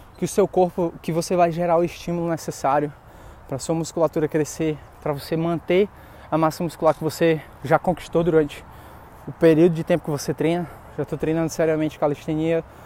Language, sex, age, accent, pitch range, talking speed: Portuguese, male, 20-39, Brazilian, 150-185 Hz, 175 wpm